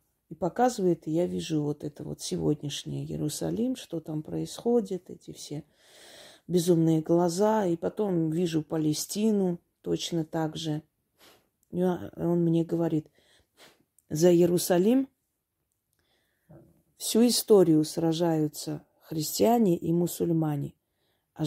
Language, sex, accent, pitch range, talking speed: Russian, female, native, 155-180 Hz, 100 wpm